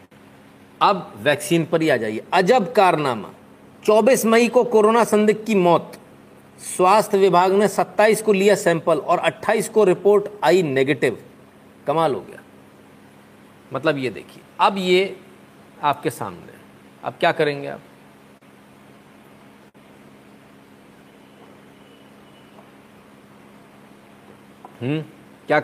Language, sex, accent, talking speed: Hindi, male, native, 105 wpm